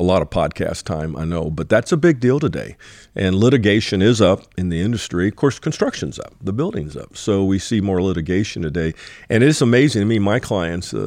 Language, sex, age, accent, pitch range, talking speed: English, male, 50-69, American, 90-110 Hz, 230 wpm